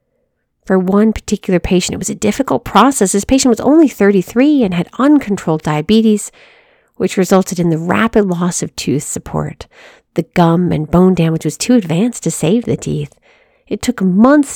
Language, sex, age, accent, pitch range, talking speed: English, female, 40-59, American, 185-265 Hz, 175 wpm